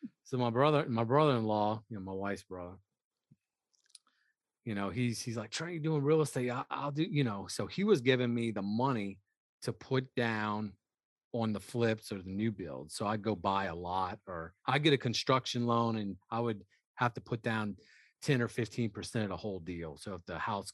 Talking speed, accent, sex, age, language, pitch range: 215 wpm, American, male, 30-49, English, 95-125 Hz